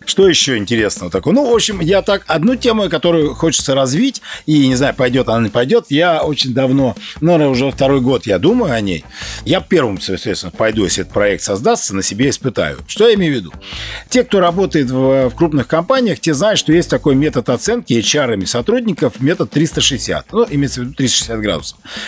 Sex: male